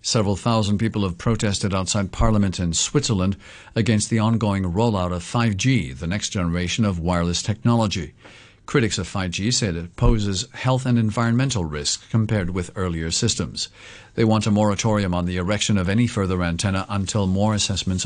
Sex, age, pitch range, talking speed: male, 50-69, 90-115 Hz, 165 wpm